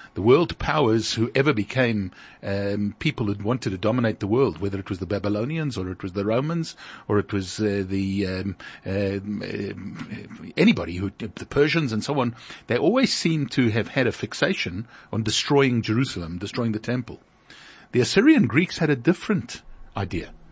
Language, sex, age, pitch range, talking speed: English, male, 50-69, 100-150 Hz, 175 wpm